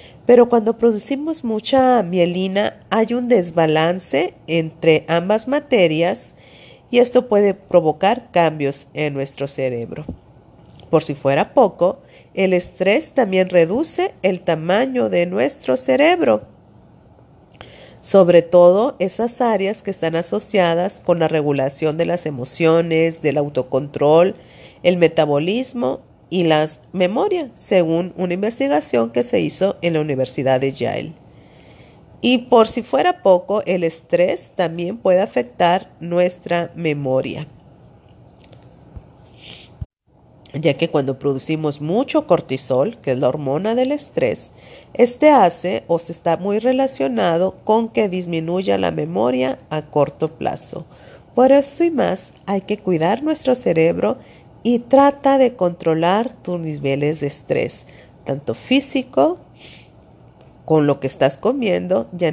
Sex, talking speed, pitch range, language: female, 125 wpm, 155-225 Hz, Spanish